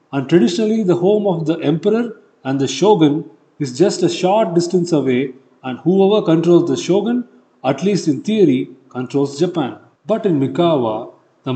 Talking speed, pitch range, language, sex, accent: 160 wpm, 130-185 Hz, Tamil, male, native